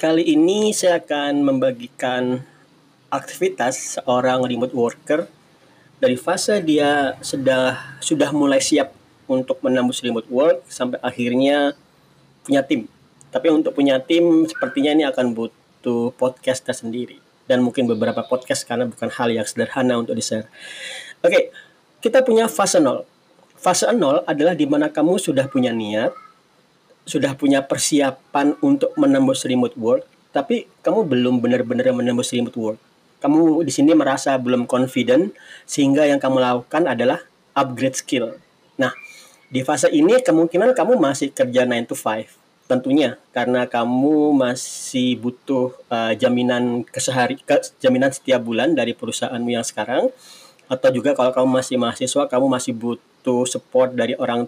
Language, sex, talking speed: Indonesian, male, 140 wpm